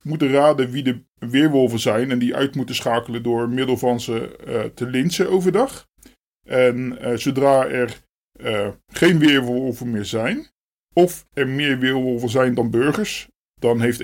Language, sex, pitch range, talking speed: Dutch, male, 125-150 Hz, 160 wpm